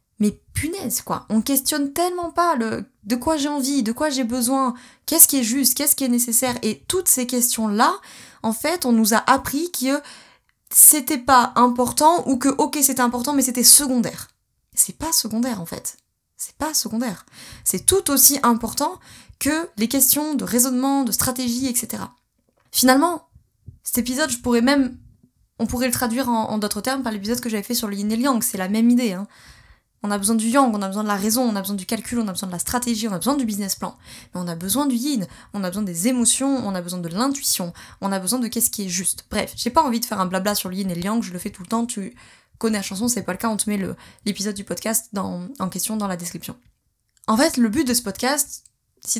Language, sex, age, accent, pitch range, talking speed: French, female, 20-39, French, 210-265 Hz, 240 wpm